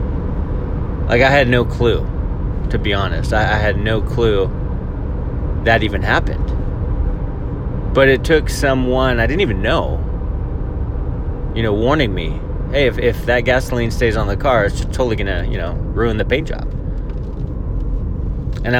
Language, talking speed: English, 155 wpm